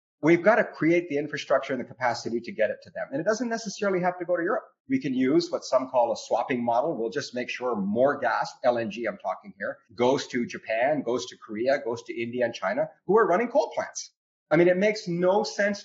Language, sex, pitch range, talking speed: English, male, 145-210 Hz, 240 wpm